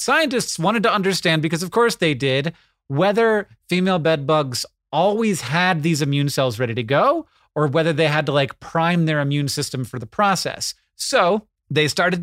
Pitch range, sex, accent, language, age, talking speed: 135-170 Hz, male, American, English, 30-49, 180 wpm